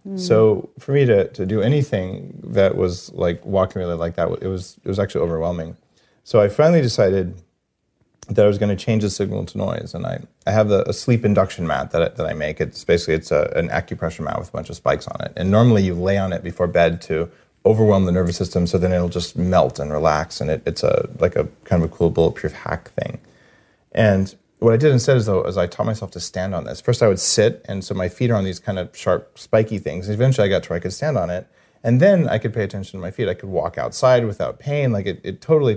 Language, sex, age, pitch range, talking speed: English, male, 30-49, 90-115 Hz, 260 wpm